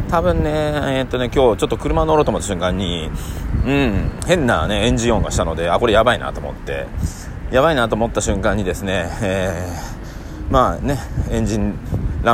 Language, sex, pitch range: Japanese, male, 85-125 Hz